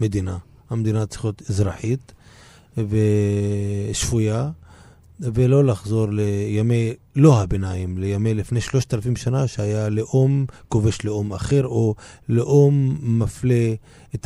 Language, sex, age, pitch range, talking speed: Hebrew, male, 30-49, 105-135 Hz, 105 wpm